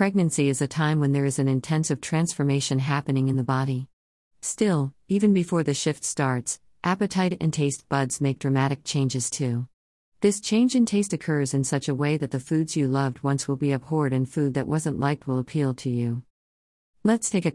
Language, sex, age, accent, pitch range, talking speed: English, female, 40-59, American, 130-160 Hz, 200 wpm